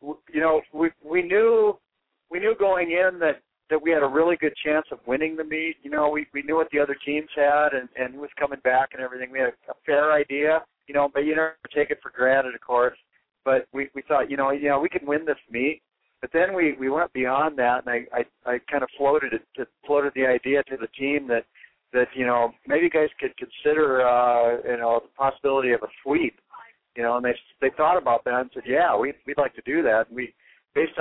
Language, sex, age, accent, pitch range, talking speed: English, male, 40-59, American, 120-155 Hz, 245 wpm